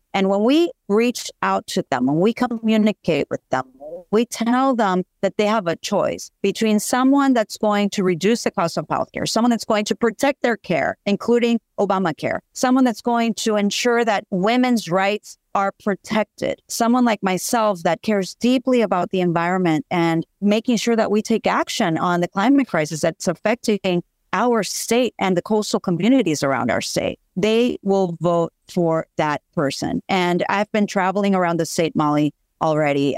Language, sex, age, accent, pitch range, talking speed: English, female, 50-69, American, 170-235 Hz, 175 wpm